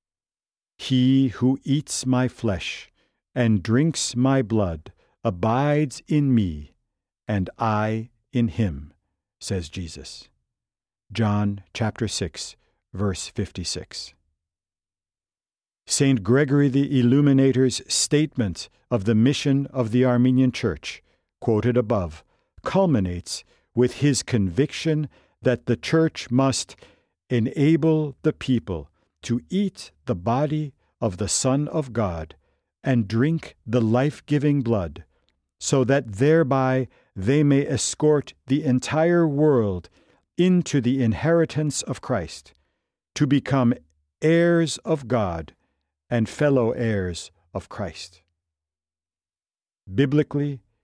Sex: male